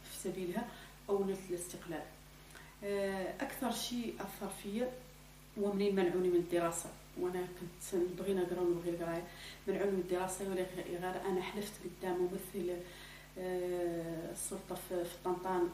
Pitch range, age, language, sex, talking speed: 180-200 Hz, 40-59, Spanish, female, 110 wpm